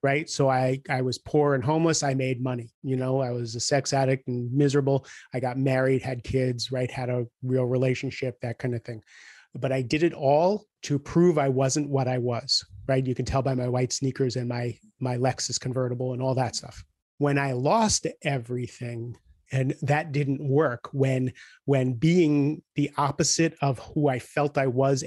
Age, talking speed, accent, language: 30-49, 195 wpm, American, English